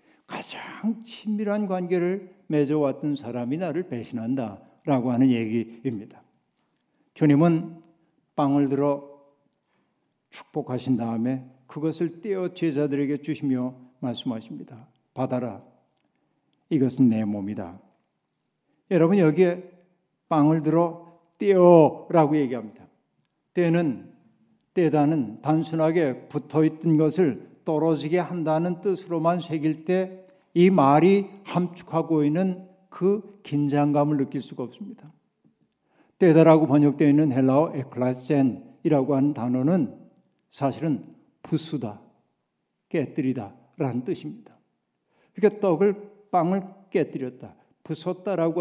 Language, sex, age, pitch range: Korean, male, 60-79, 140-180 Hz